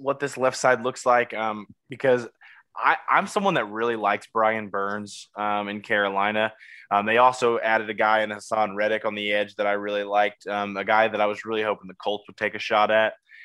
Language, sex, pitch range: English, male, 105-130 Hz